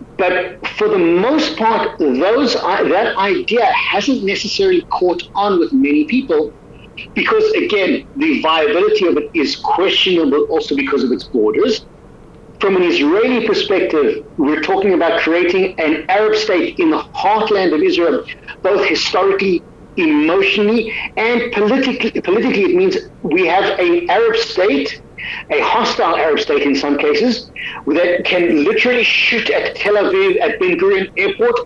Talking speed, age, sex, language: 140 wpm, 50-69, male, English